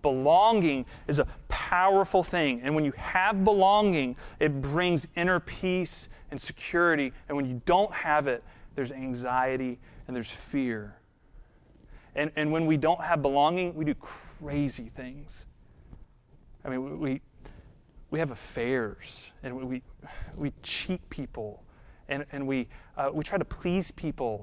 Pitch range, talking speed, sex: 130-175 Hz, 145 wpm, male